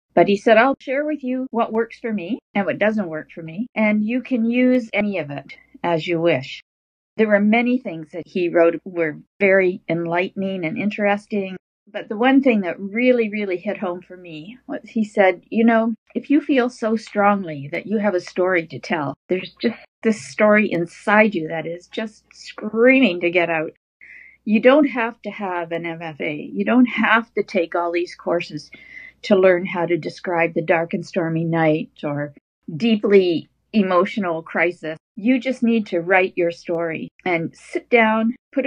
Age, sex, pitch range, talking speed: 50-69, female, 175-230 Hz, 185 wpm